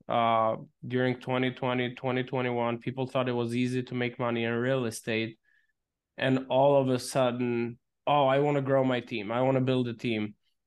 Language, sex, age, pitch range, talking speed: English, male, 20-39, 120-145 Hz, 185 wpm